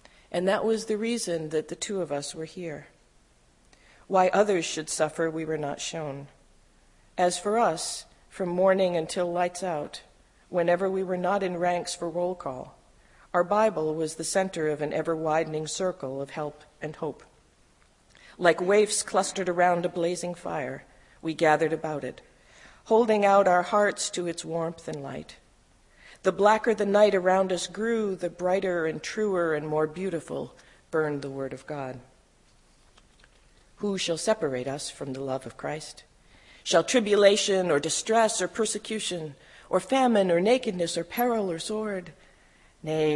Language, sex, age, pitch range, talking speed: English, female, 50-69, 150-190 Hz, 155 wpm